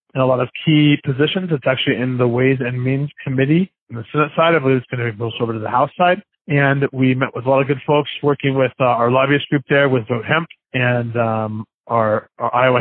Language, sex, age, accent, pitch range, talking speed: English, male, 30-49, American, 120-150 Hz, 250 wpm